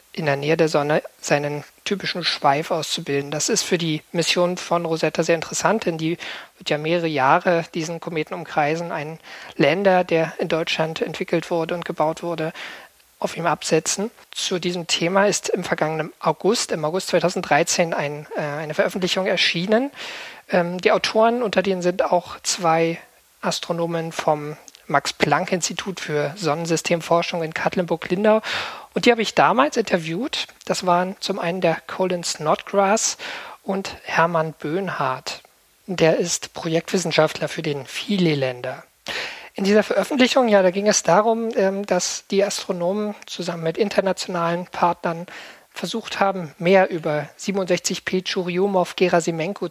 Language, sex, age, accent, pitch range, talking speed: German, male, 50-69, German, 160-195 Hz, 140 wpm